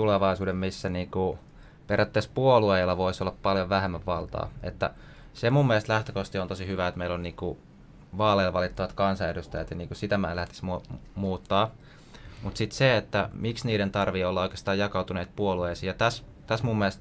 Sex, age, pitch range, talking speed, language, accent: male, 20-39, 95-110 Hz, 170 wpm, Finnish, native